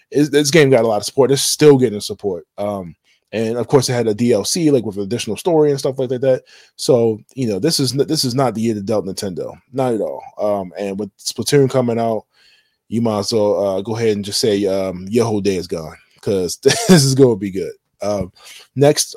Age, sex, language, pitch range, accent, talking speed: 20-39, male, English, 105-140 Hz, American, 235 wpm